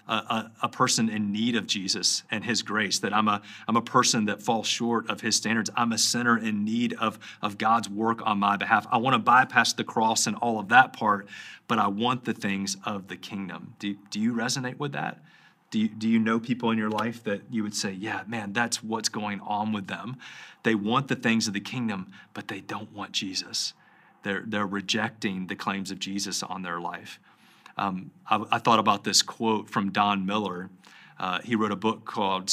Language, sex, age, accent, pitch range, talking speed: English, male, 30-49, American, 100-115 Hz, 220 wpm